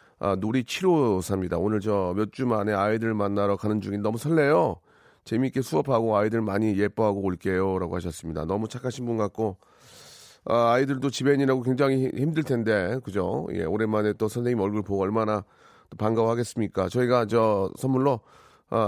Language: Korean